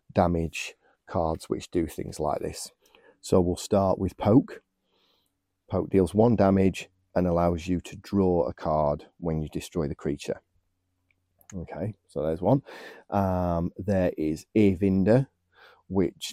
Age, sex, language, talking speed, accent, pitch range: 30-49, male, English, 135 wpm, British, 85-95 Hz